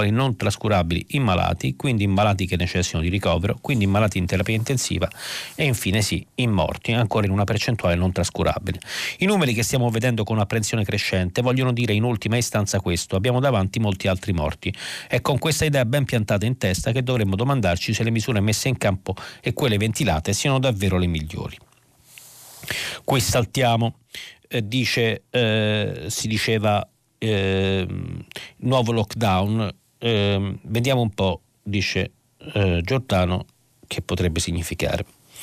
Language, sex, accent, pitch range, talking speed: Italian, male, native, 100-125 Hz, 155 wpm